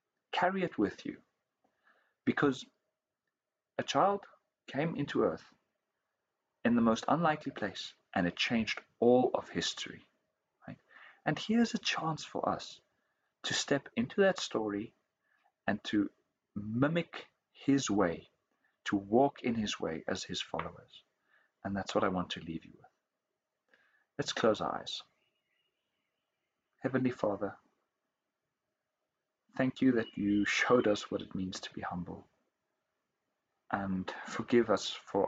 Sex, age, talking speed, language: male, 40-59, 130 wpm, English